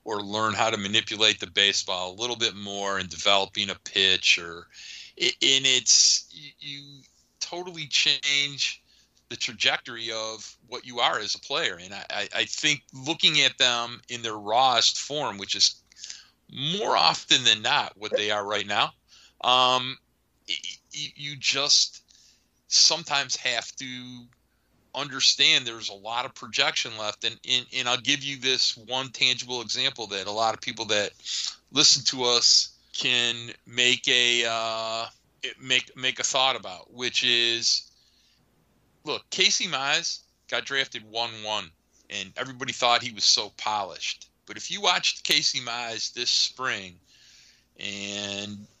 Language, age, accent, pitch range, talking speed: English, 40-59, American, 105-135 Hz, 145 wpm